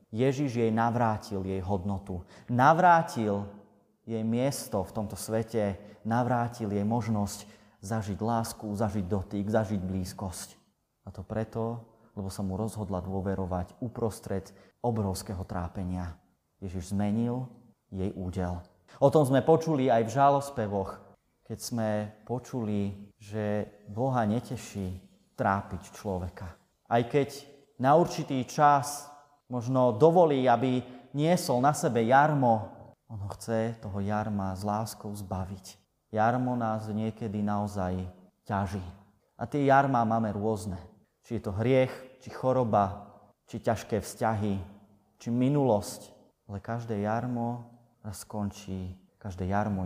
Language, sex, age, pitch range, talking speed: Slovak, male, 30-49, 100-120 Hz, 115 wpm